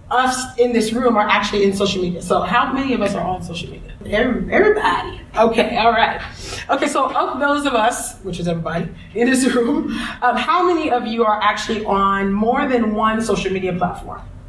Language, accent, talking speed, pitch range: English, American, 200 wpm, 195-260 Hz